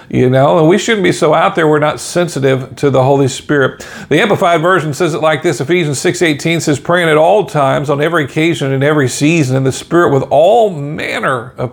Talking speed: 225 wpm